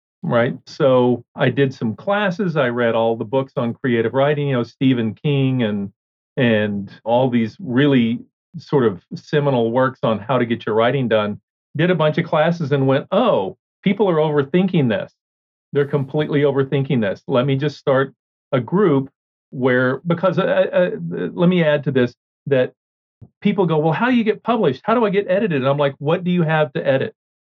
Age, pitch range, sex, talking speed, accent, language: 40-59, 125-155 Hz, male, 190 wpm, American, English